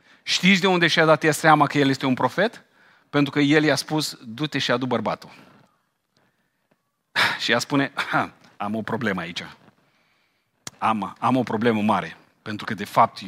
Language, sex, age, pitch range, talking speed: Romanian, male, 40-59, 110-165 Hz, 165 wpm